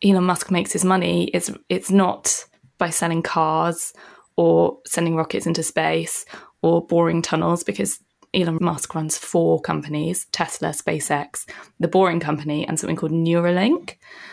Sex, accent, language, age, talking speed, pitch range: female, British, English, 20-39, 140 wpm, 160-195 Hz